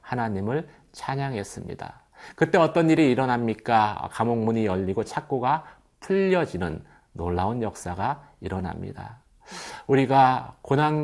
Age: 40-59